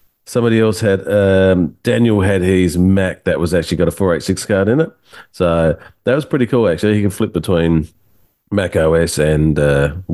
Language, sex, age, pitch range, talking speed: English, male, 40-59, 80-100 Hz, 185 wpm